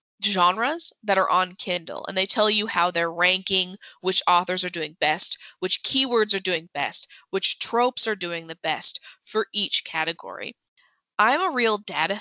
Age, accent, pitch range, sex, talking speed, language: 20-39, American, 180-225 Hz, female, 170 wpm, English